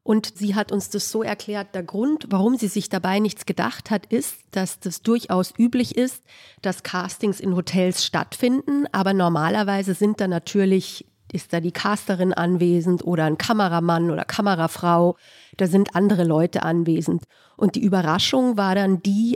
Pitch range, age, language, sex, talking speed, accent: 175-205 Hz, 40-59, German, female, 165 wpm, German